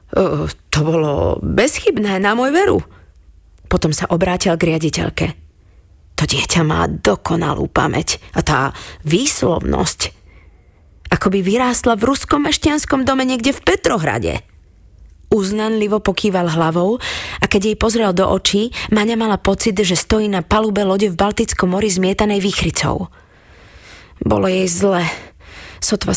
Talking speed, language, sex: 125 wpm, Slovak, female